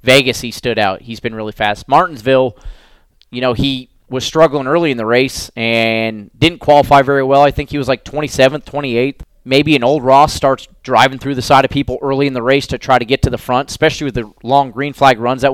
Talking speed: 230 wpm